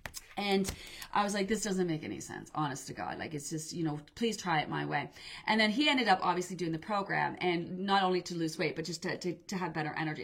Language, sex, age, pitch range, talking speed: English, female, 30-49, 180-235 Hz, 265 wpm